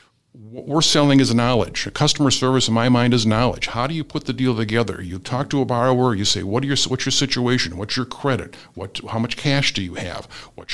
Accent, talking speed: American, 245 wpm